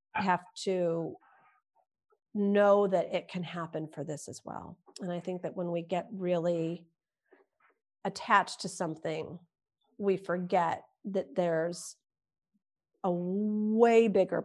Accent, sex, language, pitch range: American, female, English, 180-240 Hz